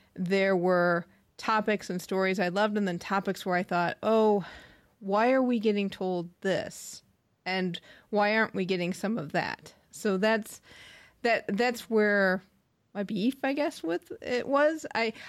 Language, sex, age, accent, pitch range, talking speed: English, female, 30-49, American, 180-220 Hz, 160 wpm